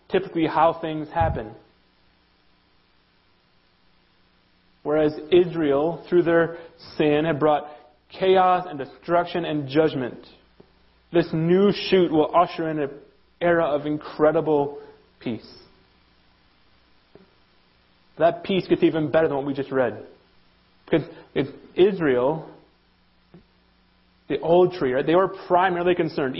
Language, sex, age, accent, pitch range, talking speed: English, male, 30-49, American, 135-170 Hz, 105 wpm